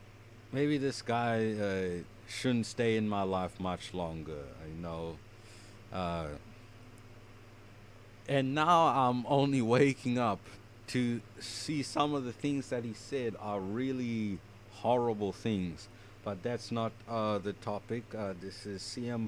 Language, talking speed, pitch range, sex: English, 135 wpm, 105-135 Hz, male